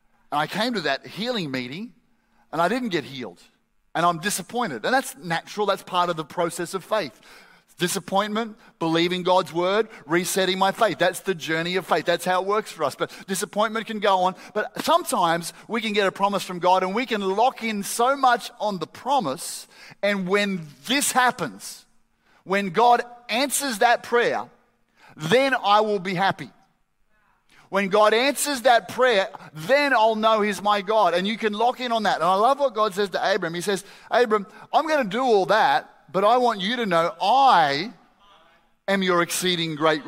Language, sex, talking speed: English, male, 190 wpm